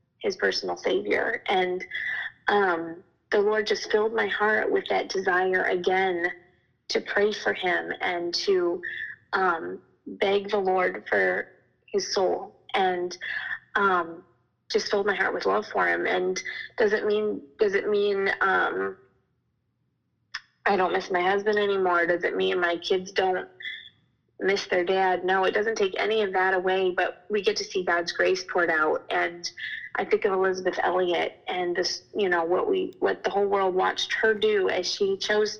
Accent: American